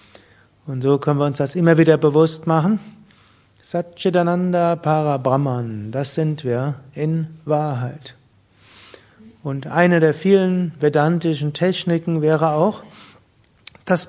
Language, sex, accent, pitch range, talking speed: German, male, German, 130-175 Hz, 110 wpm